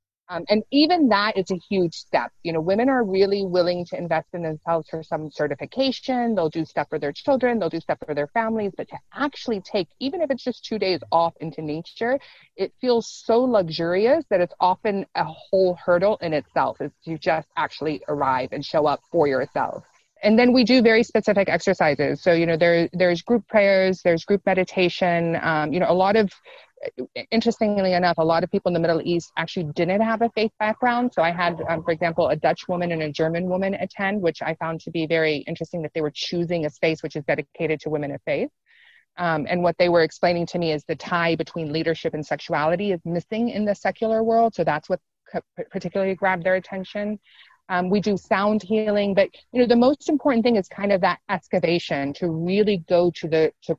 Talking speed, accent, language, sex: 215 wpm, American, English, female